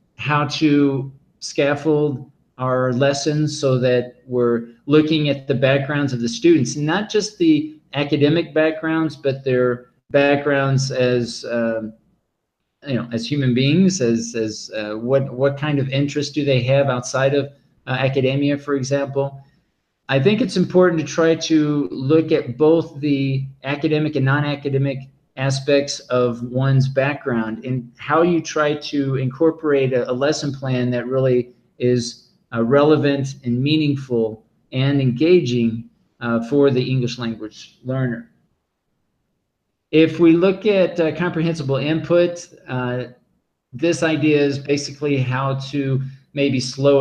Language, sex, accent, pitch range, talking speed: English, male, American, 125-150 Hz, 135 wpm